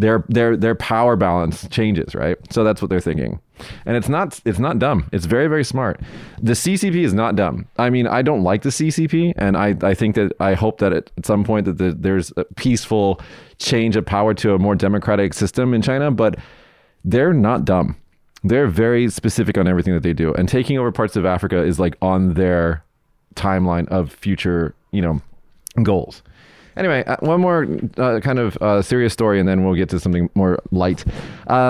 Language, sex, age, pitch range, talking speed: English, male, 30-49, 95-115 Hz, 200 wpm